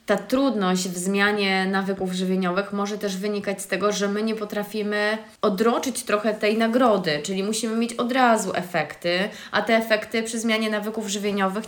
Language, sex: Polish, female